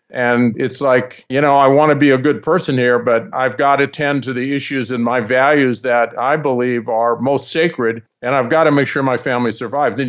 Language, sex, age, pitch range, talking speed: English, male, 50-69, 130-160 Hz, 240 wpm